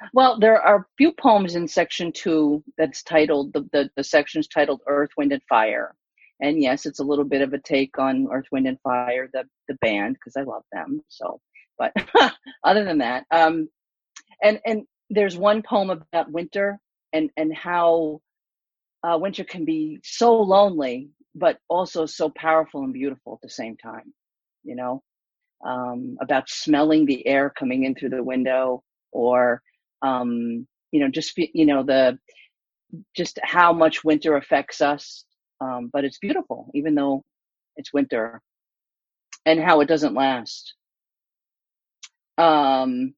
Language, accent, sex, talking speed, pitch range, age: English, American, female, 155 wpm, 135-180 Hz, 40-59